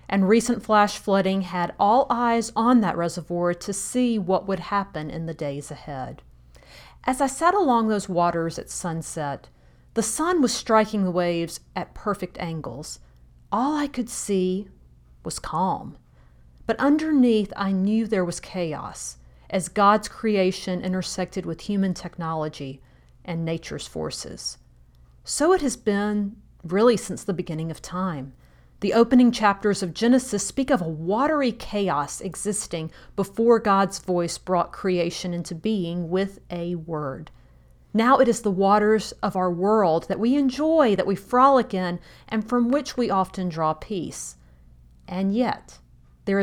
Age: 40-59